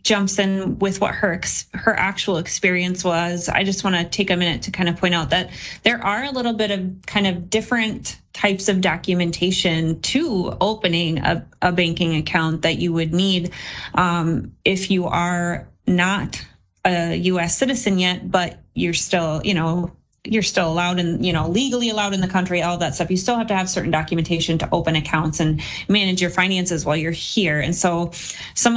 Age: 30-49